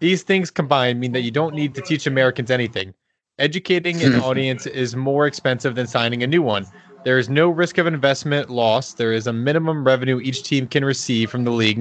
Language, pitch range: English, 125-155 Hz